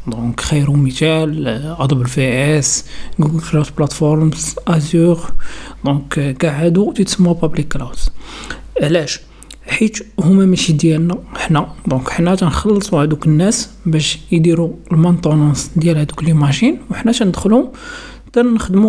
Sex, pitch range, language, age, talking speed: male, 160-185 Hz, Arabic, 50-69, 120 wpm